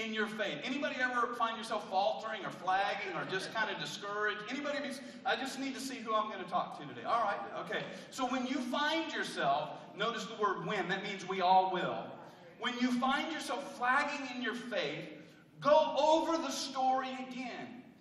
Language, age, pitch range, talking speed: English, 40-59, 200-280 Hz, 185 wpm